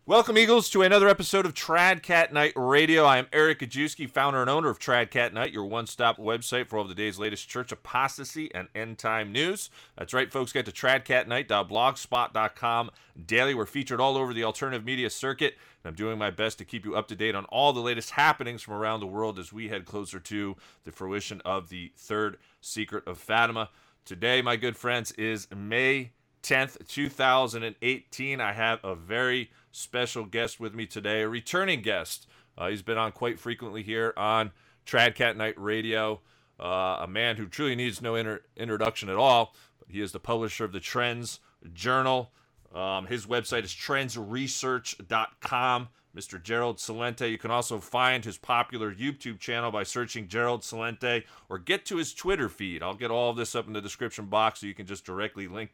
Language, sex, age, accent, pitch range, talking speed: English, male, 30-49, American, 105-125 Hz, 190 wpm